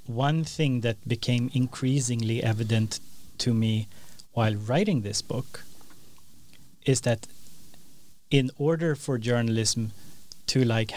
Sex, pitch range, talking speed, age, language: male, 110-130 Hz, 110 wpm, 30-49, English